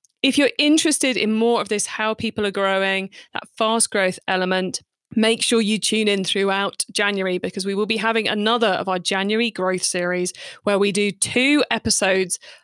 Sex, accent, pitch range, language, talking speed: female, British, 185-225 Hz, English, 180 wpm